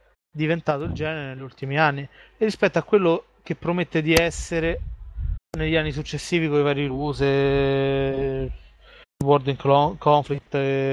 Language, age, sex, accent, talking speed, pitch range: Italian, 30-49, male, native, 130 wpm, 140-165 Hz